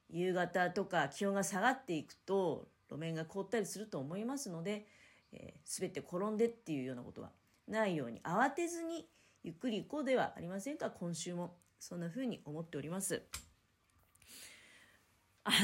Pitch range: 140-230 Hz